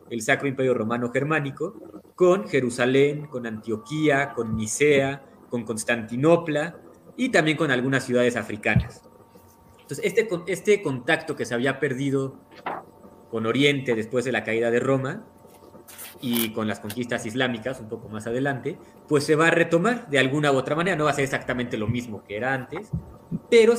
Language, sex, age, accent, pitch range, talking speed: Spanish, male, 30-49, Mexican, 120-160 Hz, 165 wpm